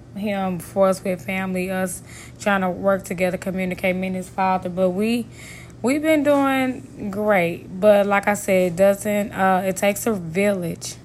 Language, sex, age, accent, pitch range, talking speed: English, female, 20-39, American, 185-205 Hz, 175 wpm